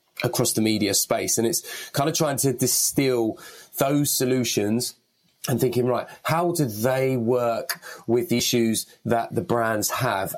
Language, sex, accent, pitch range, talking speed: English, male, British, 115-130 Hz, 155 wpm